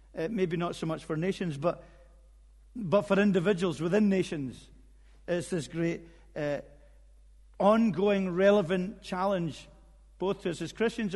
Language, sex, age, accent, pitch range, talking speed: English, male, 50-69, British, 145-195 Hz, 135 wpm